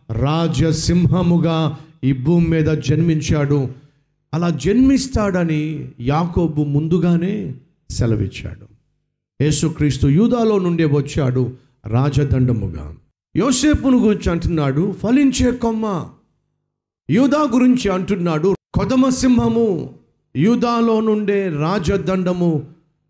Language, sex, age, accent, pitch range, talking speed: Telugu, male, 50-69, native, 140-200 Hz, 70 wpm